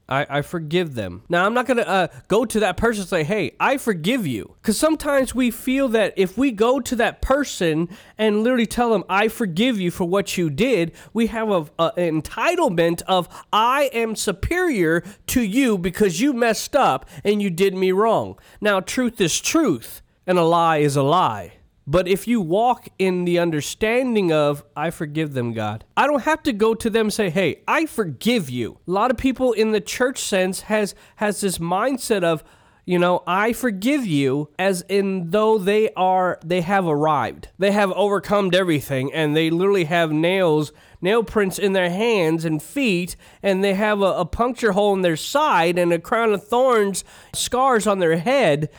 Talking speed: 190 wpm